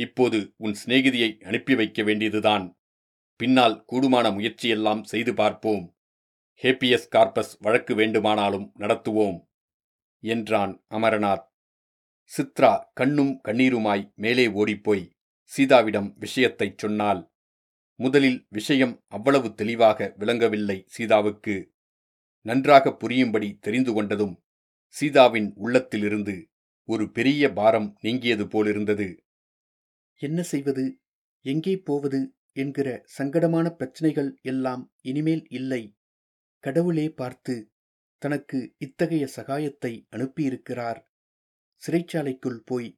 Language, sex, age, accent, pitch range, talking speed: Tamil, male, 40-59, native, 105-140 Hz, 85 wpm